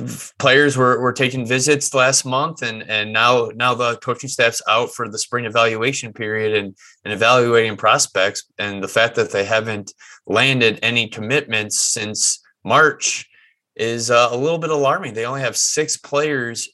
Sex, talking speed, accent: male, 165 wpm, American